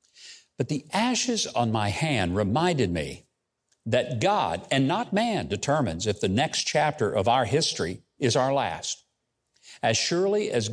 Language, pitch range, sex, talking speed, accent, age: English, 120-175 Hz, male, 150 wpm, American, 60-79